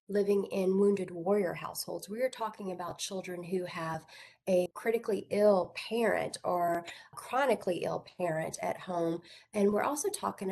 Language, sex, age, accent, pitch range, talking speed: English, female, 30-49, American, 175-225 Hz, 150 wpm